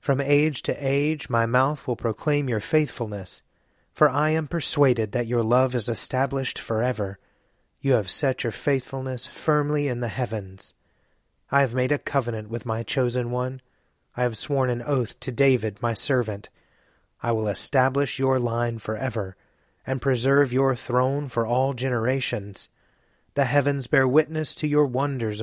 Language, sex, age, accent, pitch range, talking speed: English, male, 30-49, American, 115-140 Hz, 160 wpm